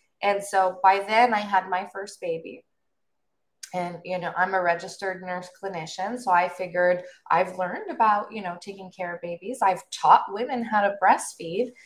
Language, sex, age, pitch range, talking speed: English, female, 20-39, 185-220 Hz, 175 wpm